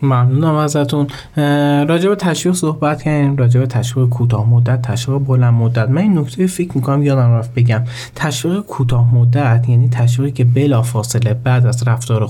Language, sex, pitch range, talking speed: Persian, male, 120-145 Hz, 140 wpm